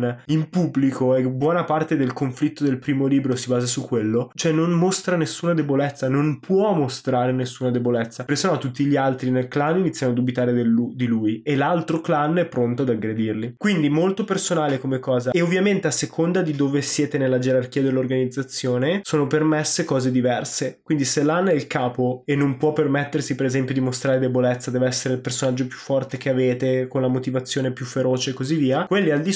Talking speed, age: 200 wpm, 20-39